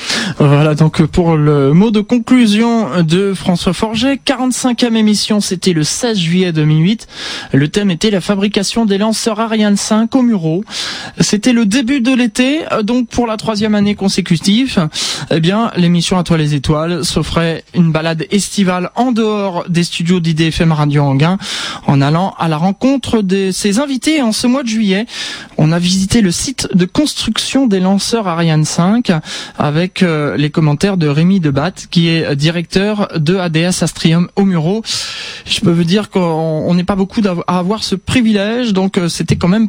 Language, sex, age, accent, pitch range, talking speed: French, male, 20-39, French, 170-225 Hz, 170 wpm